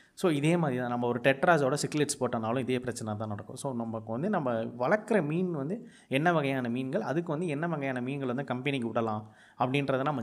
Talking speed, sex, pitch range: 190 wpm, male, 120-170 Hz